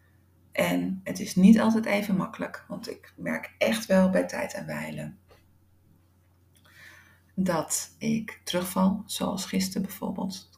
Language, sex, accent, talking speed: Dutch, female, Dutch, 130 wpm